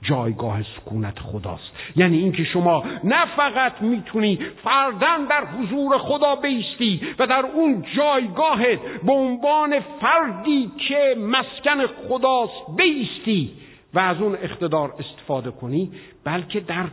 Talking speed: 115 wpm